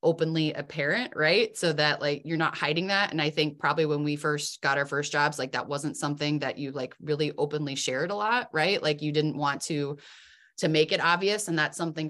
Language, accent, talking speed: English, American, 230 wpm